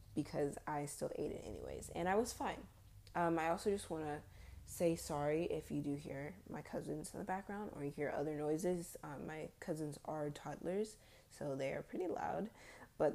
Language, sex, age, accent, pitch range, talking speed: English, female, 20-39, American, 145-175 Hz, 195 wpm